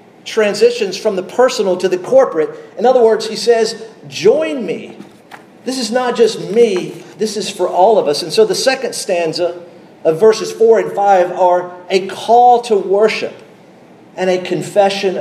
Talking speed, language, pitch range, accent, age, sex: 170 wpm, English, 175-225 Hz, American, 50-69, male